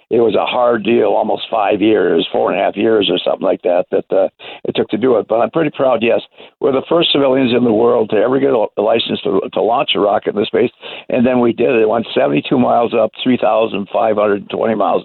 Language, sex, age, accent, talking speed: English, male, 60-79, American, 260 wpm